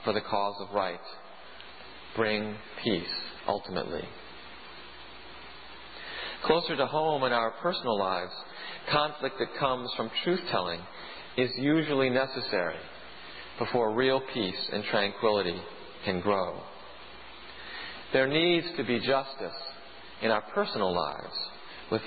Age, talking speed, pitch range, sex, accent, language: 40-59, 110 wpm, 110-140 Hz, male, American, English